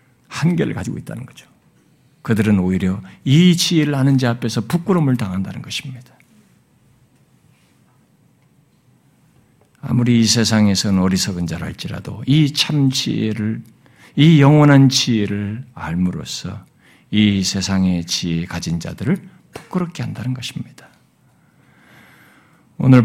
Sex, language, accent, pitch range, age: male, Korean, native, 110-185 Hz, 50-69